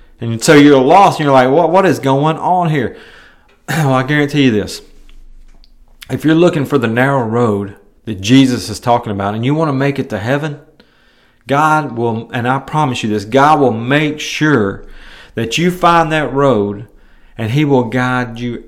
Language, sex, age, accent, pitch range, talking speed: English, male, 40-59, American, 110-155 Hz, 190 wpm